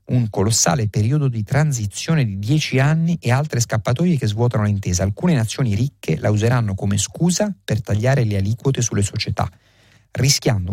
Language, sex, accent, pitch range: Italian, male, native, 100-125 Hz